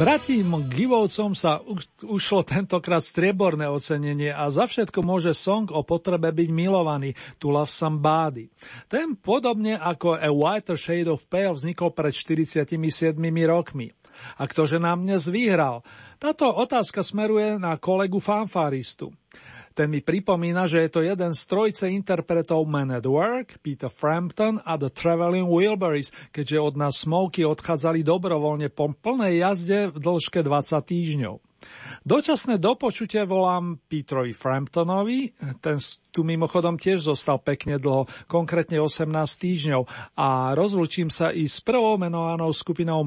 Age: 40-59